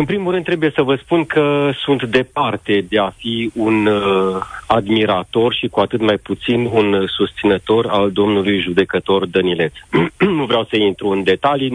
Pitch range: 100-130 Hz